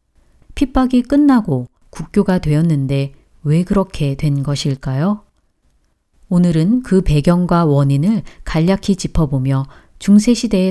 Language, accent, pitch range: Korean, native, 140-210 Hz